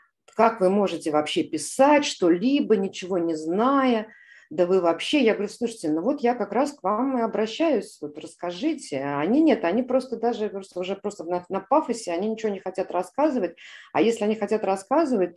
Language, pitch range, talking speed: Russian, 170-250 Hz, 180 wpm